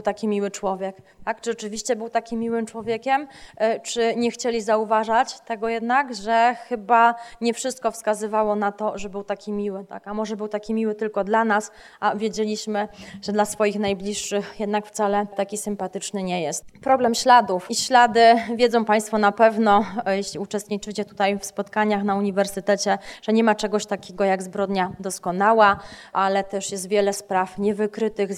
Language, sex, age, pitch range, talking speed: Polish, female, 20-39, 200-220 Hz, 165 wpm